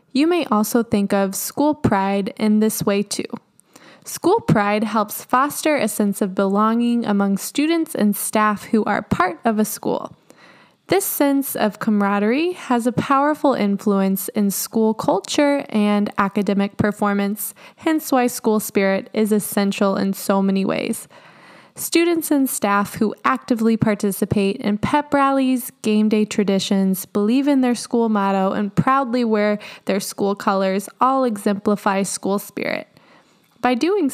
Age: 10-29